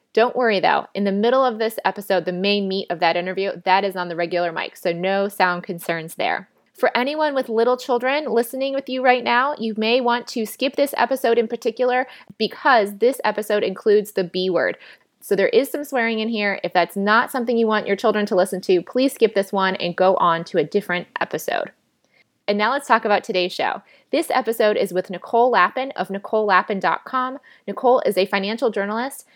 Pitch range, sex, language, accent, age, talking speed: 185-240 Hz, female, English, American, 20-39, 205 wpm